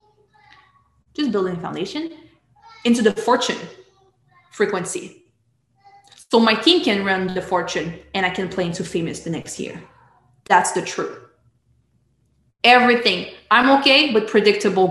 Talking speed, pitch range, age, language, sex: 125 wpm, 180-235 Hz, 20-39, English, female